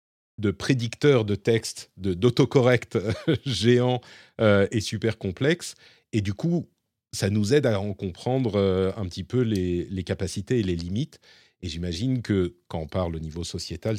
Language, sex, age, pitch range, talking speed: French, male, 40-59, 95-125 Hz, 165 wpm